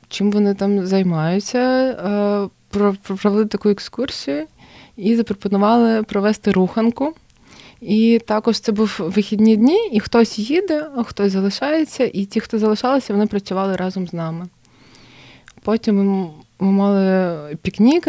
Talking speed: 120 wpm